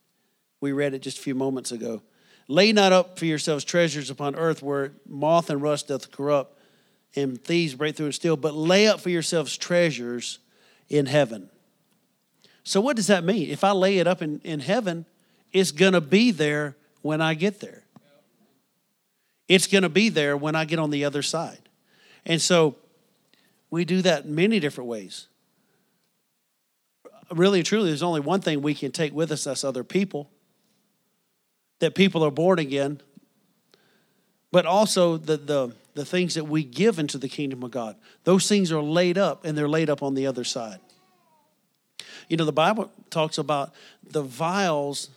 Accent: American